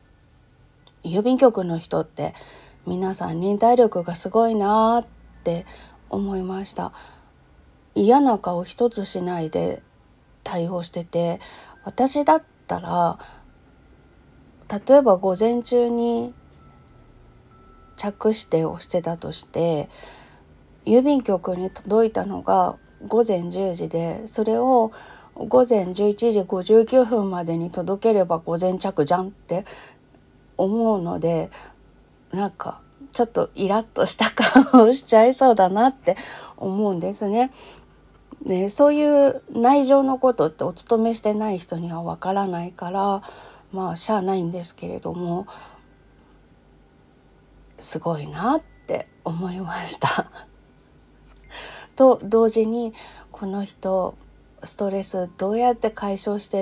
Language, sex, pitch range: Japanese, female, 175-230 Hz